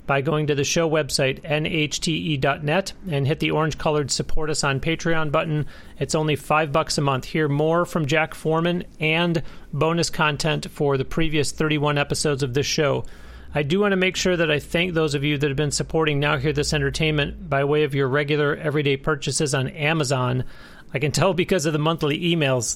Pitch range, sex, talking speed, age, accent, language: 140-160 Hz, male, 200 wpm, 40-59, American, English